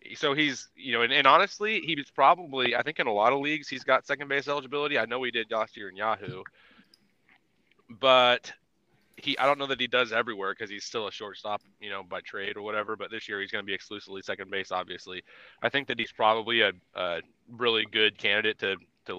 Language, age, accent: English, 20-39, American